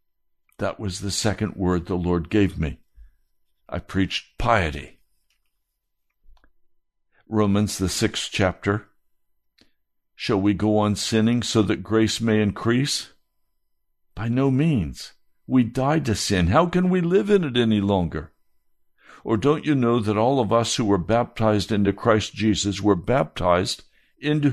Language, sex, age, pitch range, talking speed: English, male, 60-79, 95-135 Hz, 140 wpm